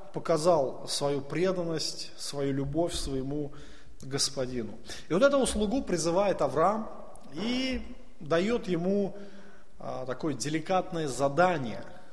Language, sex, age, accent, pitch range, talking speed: Russian, male, 20-39, native, 145-200 Hz, 95 wpm